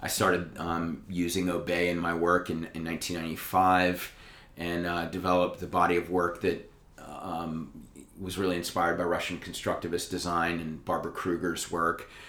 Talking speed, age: 150 wpm, 30-49